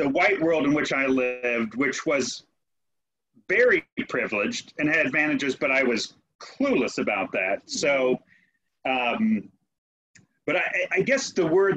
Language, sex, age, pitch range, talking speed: English, male, 30-49, 140-215 Hz, 145 wpm